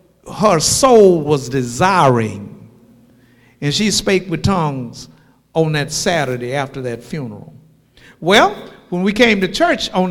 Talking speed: 130 wpm